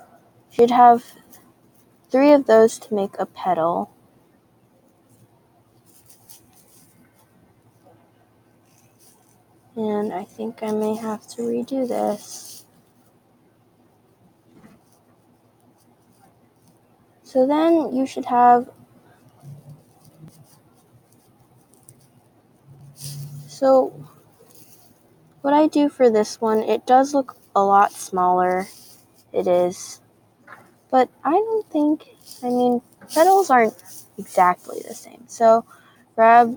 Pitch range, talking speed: 155-245 Hz, 85 wpm